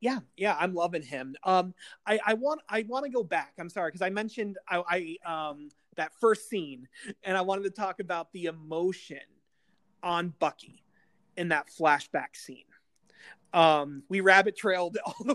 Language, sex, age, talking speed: English, male, 30-49, 175 wpm